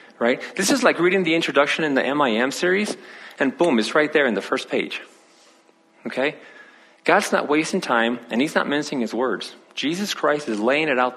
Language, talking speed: English, 200 wpm